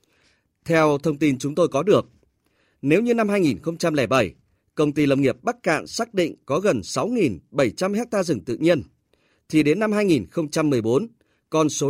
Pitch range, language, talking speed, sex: 140-190 Hz, Vietnamese, 160 wpm, male